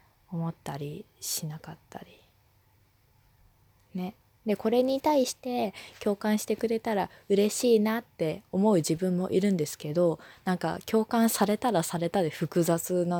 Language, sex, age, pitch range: Japanese, female, 20-39, 125-175 Hz